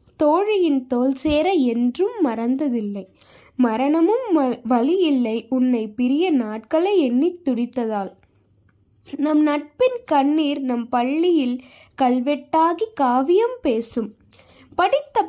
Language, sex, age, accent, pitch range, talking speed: Tamil, female, 20-39, native, 245-345 Hz, 80 wpm